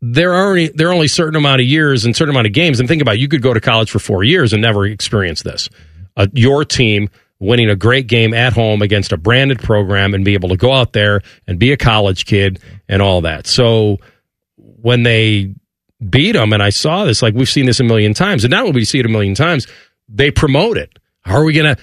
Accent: American